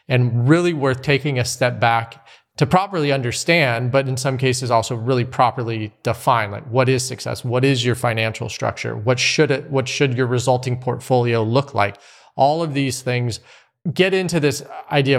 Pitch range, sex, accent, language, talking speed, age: 120-140 Hz, male, American, English, 180 wpm, 30-49